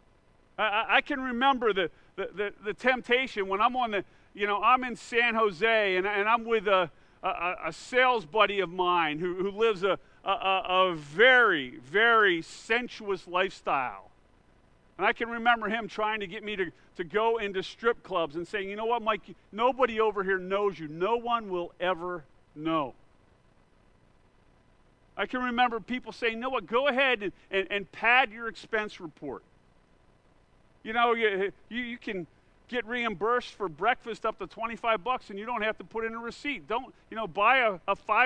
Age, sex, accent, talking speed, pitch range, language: 50-69, male, American, 180 wpm, 190-245 Hz, English